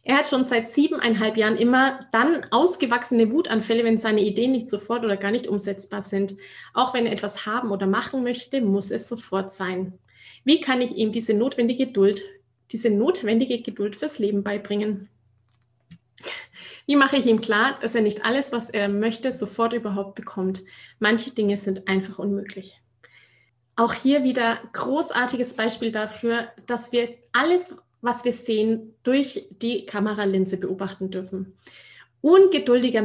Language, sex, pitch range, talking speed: German, female, 200-245 Hz, 150 wpm